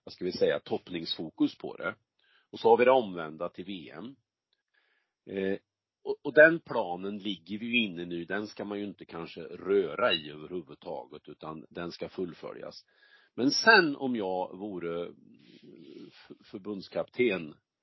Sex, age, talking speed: male, 40-59, 145 wpm